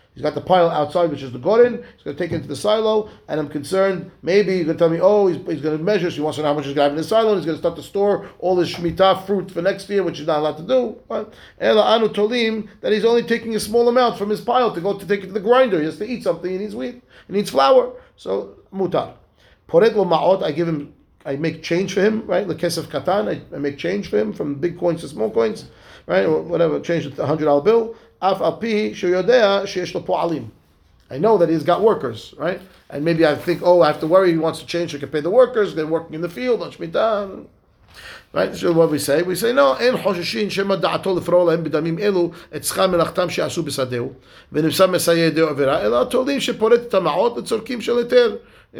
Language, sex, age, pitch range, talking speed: English, male, 30-49, 155-210 Hz, 220 wpm